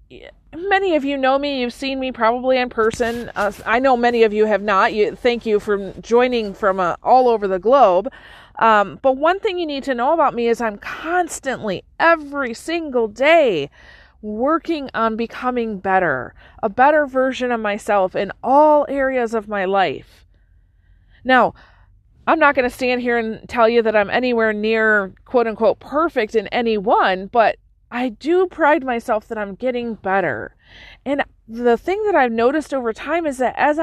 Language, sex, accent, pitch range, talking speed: English, female, American, 210-275 Hz, 180 wpm